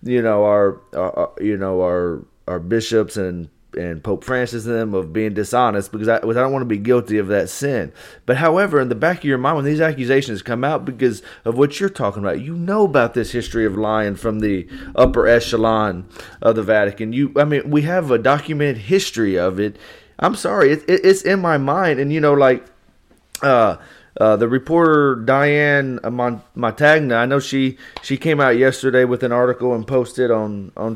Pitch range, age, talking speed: 110-140 Hz, 30-49, 205 wpm